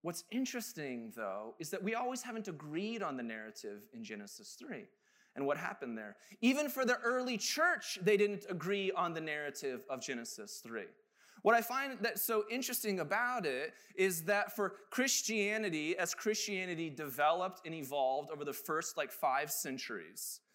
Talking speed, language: 165 wpm, English